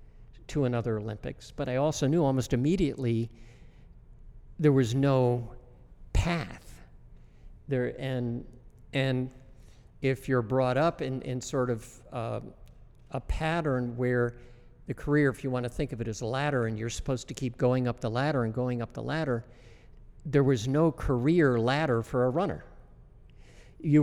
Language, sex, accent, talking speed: English, male, American, 155 wpm